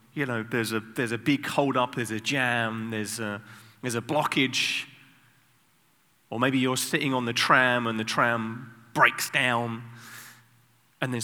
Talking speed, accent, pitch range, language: 160 wpm, British, 115-145 Hz, English